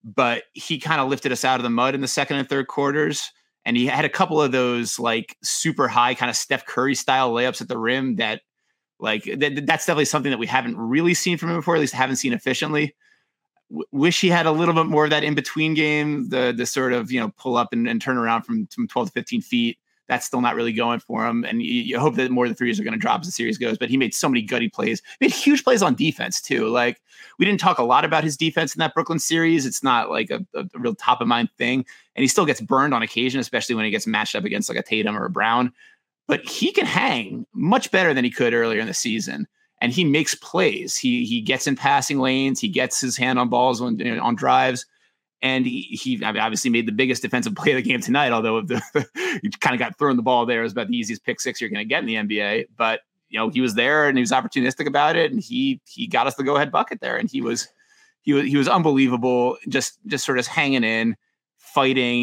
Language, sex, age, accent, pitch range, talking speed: English, male, 30-49, American, 125-170 Hz, 260 wpm